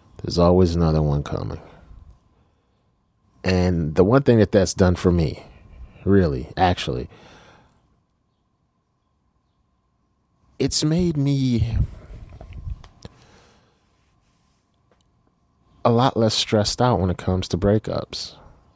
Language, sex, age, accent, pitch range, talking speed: English, male, 30-49, American, 85-105 Hz, 95 wpm